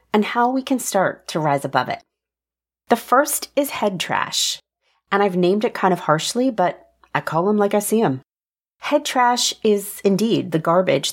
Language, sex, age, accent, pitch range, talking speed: English, female, 30-49, American, 165-220 Hz, 190 wpm